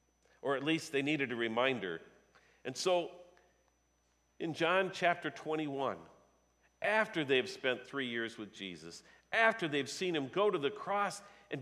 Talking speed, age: 150 wpm, 50-69